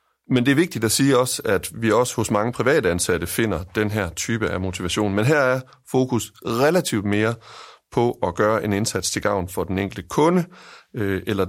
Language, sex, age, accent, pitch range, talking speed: Danish, male, 30-49, native, 95-120 Hz, 200 wpm